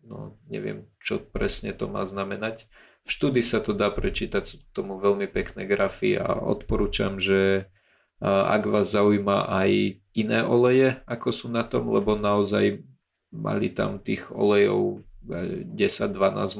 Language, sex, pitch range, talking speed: Slovak, male, 95-110 Hz, 135 wpm